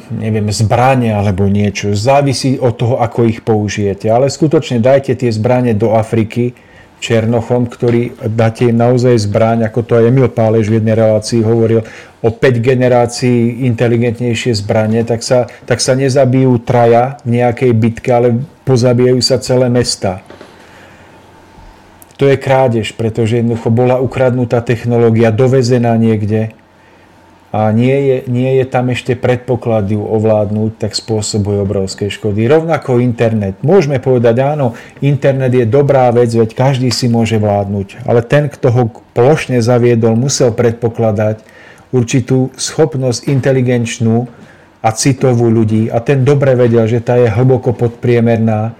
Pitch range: 110-125 Hz